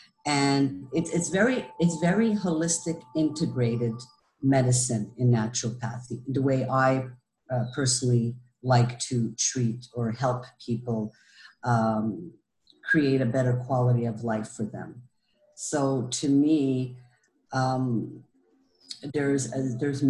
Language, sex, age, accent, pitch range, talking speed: English, female, 50-69, American, 125-150 Hz, 110 wpm